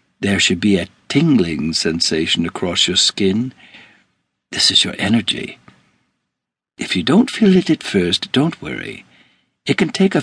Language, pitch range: English, 95-120 Hz